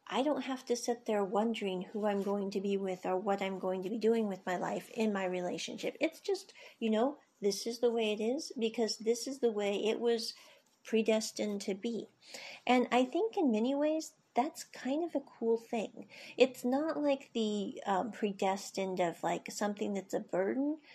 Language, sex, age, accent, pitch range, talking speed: English, female, 40-59, American, 205-270 Hz, 200 wpm